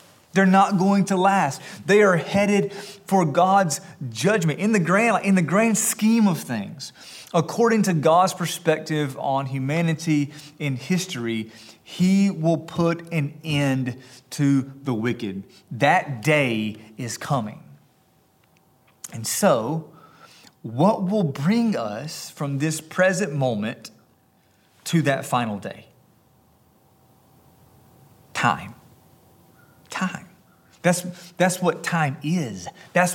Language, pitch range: English, 135-185 Hz